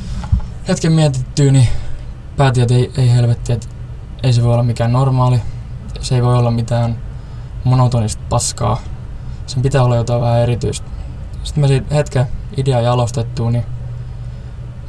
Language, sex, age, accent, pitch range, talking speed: Finnish, male, 20-39, native, 120-130 Hz, 135 wpm